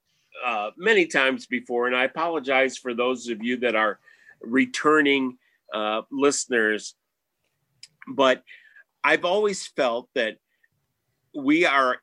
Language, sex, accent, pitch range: English, male, American, 120-150 Hz